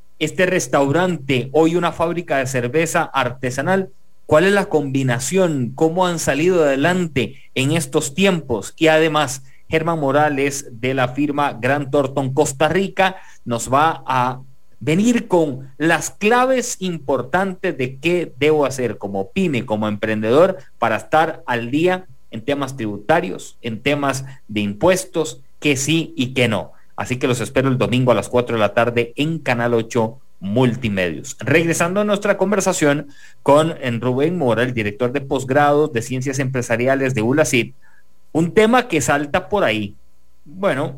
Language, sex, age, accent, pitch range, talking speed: English, male, 40-59, Mexican, 120-160 Hz, 150 wpm